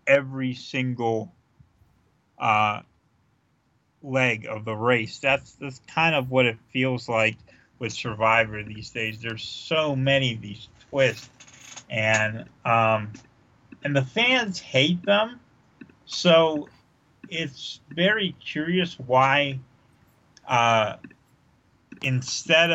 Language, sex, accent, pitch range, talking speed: English, male, American, 120-155 Hz, 105 wpm